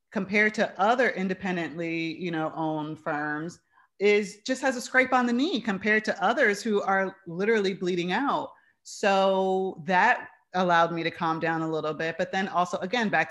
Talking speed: 175 wpm